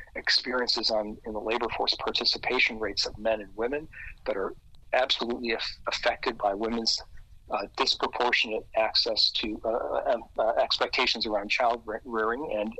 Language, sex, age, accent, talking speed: English, male, 40-59, American, 135 wpm